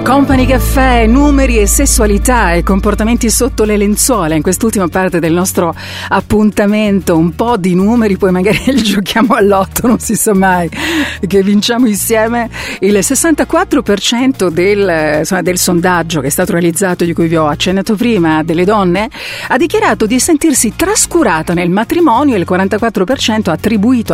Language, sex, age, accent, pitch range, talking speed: Italian, female, 50-69, native, 185-275 Hz, 150 wpm